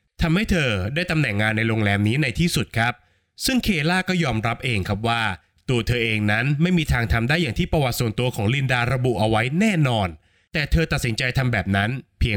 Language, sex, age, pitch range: Thai, male, 20-39, 110-160 Hz